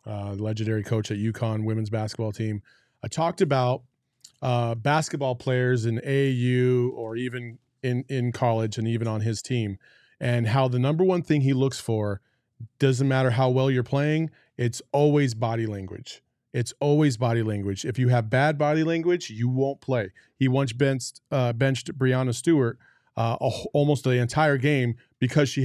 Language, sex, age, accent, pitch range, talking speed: English, male, 30-49, American, 120-145 Hz, 175 wpm